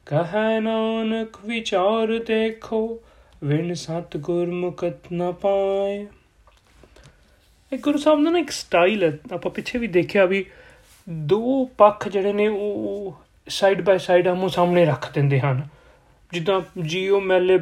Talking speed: 115 wpm